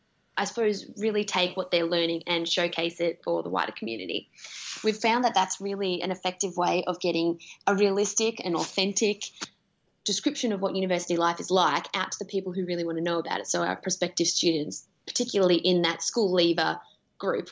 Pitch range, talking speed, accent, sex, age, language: 170-200 Hz, 190 wpm, Australian, female, 20-39, English